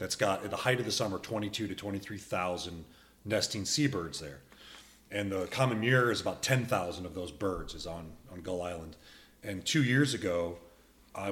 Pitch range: 95-125 Hz